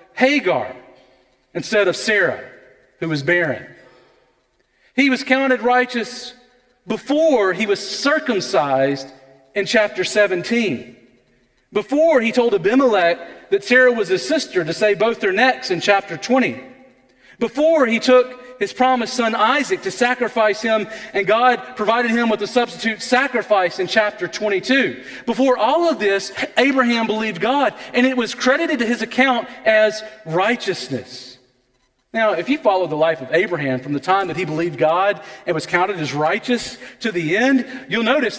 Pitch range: 165-245 Hz